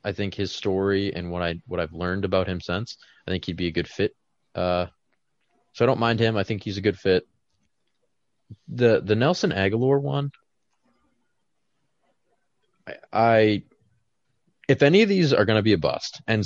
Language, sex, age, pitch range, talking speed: English, male, 20-39, 90-130 Hz, 190 wpm